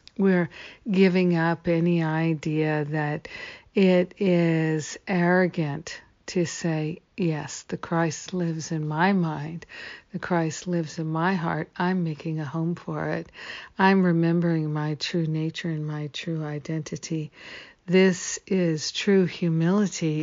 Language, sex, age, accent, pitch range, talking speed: English, female, 60-79, American, 155-180 Hz, 130 wpm